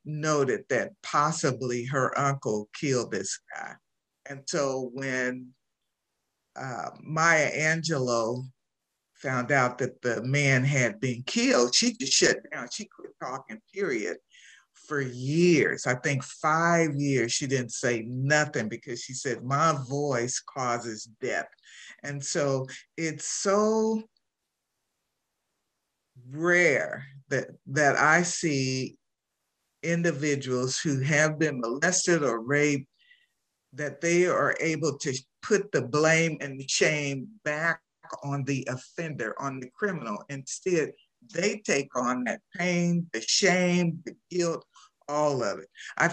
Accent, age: American, 50-69